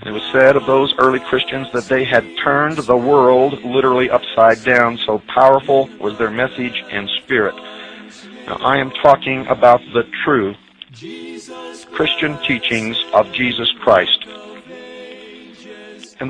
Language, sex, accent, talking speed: English, male, American, 135 wpm